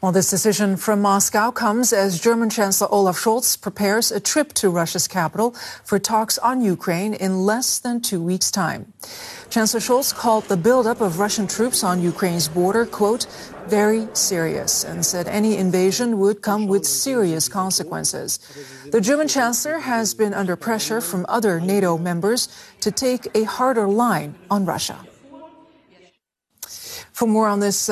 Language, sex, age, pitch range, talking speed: English, female, 40-59, 185-230 Hz, 155 wpm